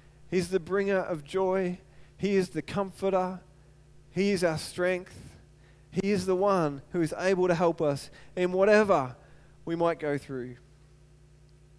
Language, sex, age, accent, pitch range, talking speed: English, male, 20-39, Australian, 150-190 Hz, 150 wpm